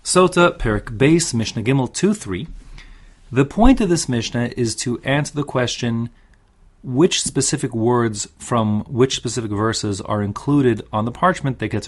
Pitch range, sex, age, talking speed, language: 100-125 Hz, male, 30-49, 155 wpm, English